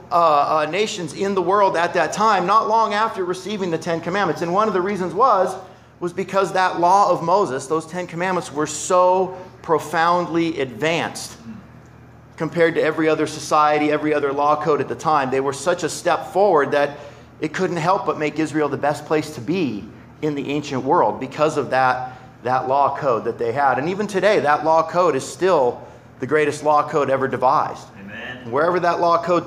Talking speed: 195 wpm